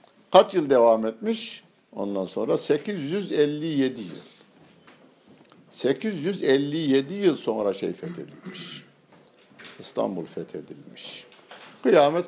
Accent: native